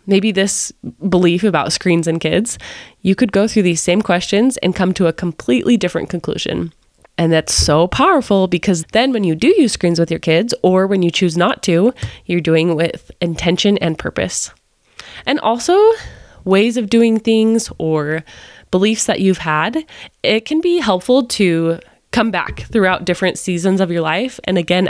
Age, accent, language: 20-39, American, English